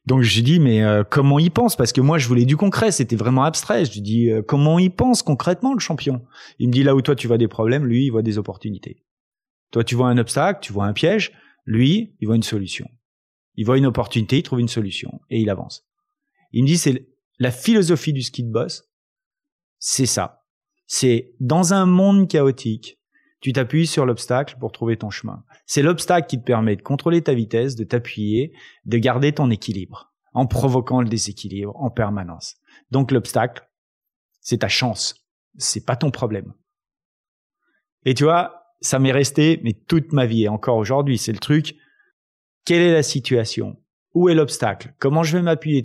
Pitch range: 115-155 Hz